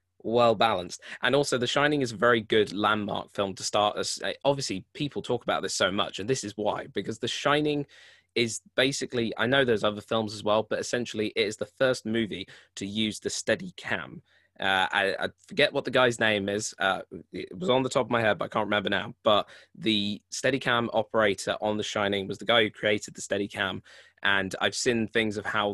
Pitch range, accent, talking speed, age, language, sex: 100-120 Hz, British, 220 wpm, 20-39, English, male